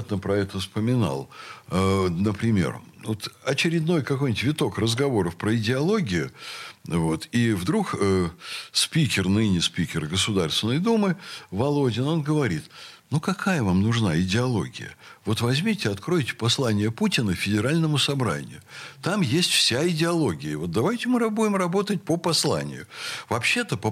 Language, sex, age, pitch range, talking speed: Russian, male, 60-79, 100-155 Hz, 120 wpm